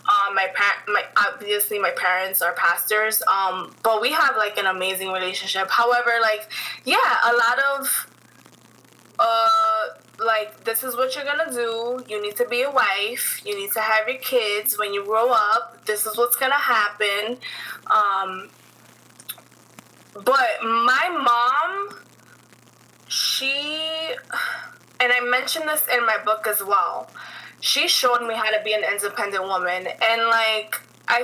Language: English